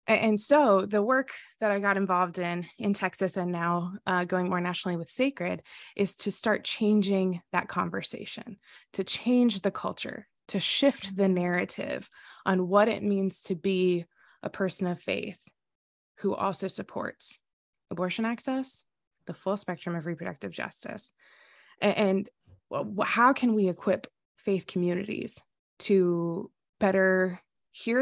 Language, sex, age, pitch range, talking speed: English, female, 20-39, 180-220 Hz, 135 wpm